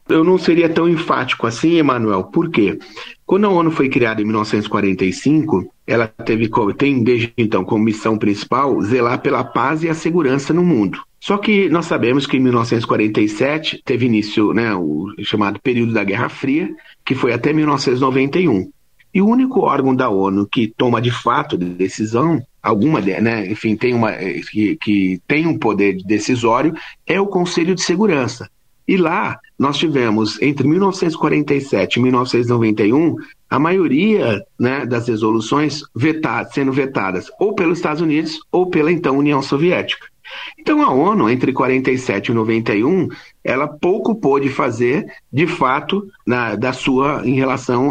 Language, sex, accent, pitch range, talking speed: Portuguese, male, Brazilian, 115-160 Hz, 155 wpm